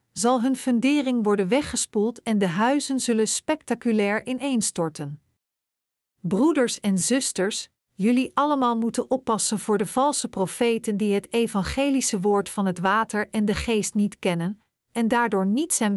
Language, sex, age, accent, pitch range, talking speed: Dutch, female, 50-69, Dutch, 200-255 Hz, 145 wpm